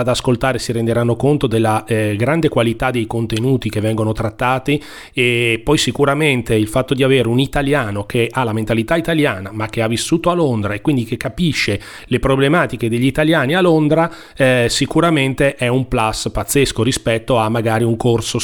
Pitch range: 115-155 Hz